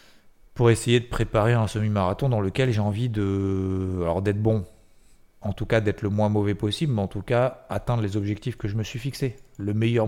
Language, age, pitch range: French, 30-49, 100-120 Hz